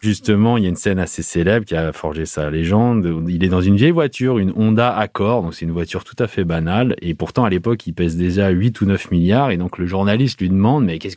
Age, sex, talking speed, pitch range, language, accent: 30-49, male, 265 wpm, 85-115 Hz, French, French